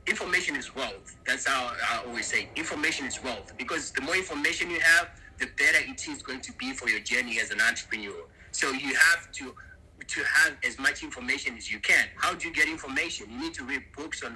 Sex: male